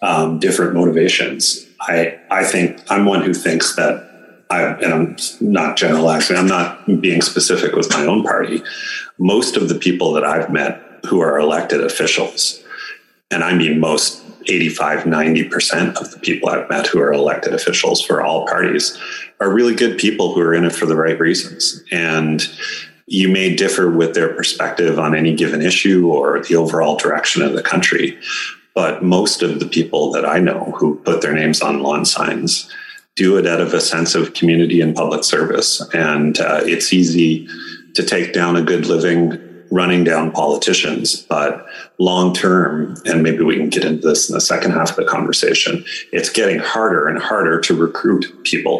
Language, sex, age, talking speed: English, male, 40-59, 180 wpm